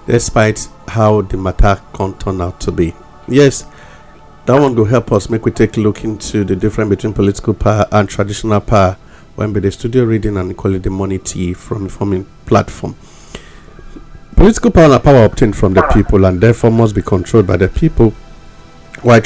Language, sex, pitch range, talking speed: English, male, 100-125 Hz, 185 wpm